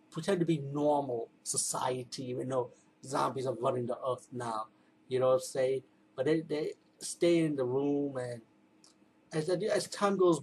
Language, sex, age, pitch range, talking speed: English, male, 30-49, 130-155 Hz, 180 wpm